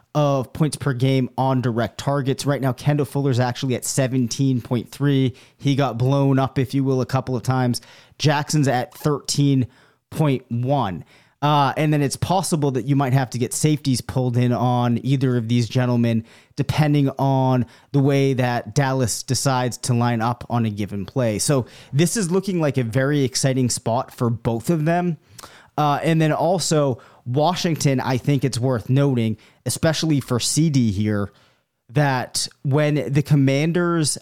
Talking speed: 160 wpm